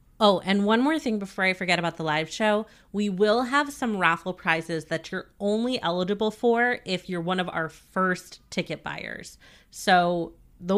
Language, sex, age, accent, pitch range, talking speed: English, female, 30-49, American, 175-215 Hz, 185 wpm